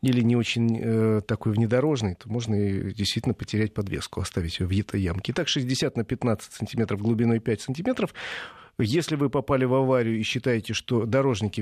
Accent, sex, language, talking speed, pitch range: native, male, Russian, 175 wpm, 115-155 Hz